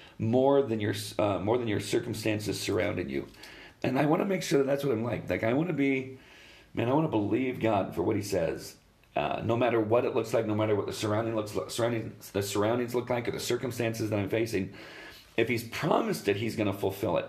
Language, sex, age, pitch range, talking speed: English, male, 40-59, 100-115 Hz, 235 wpm